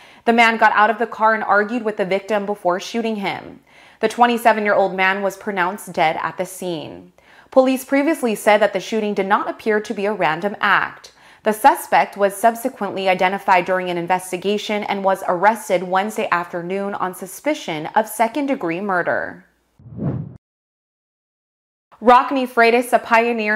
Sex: female